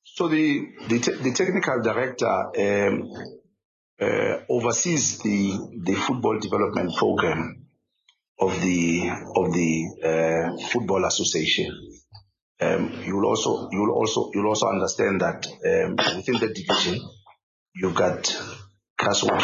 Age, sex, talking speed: 50-69, male, 115 wpm